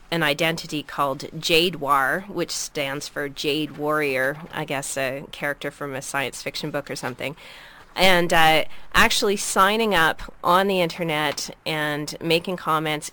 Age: 30-49